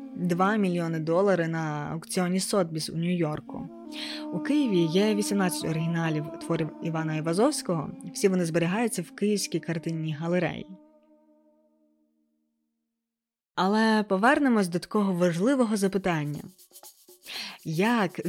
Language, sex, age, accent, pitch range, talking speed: Ukrainian, female, 20-39, native, 160-215 Hz, 100 wpm